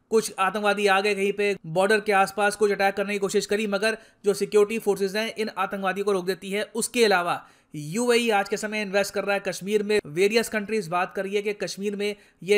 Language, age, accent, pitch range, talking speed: Hindi, 30-49, native, 195-215 Hz, 220 wpm